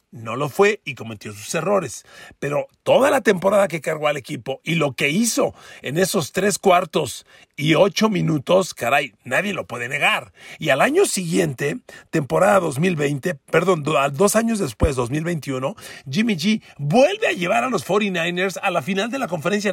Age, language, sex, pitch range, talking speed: 40-59, Spanish, male, 145-205 Hz, 170 wpm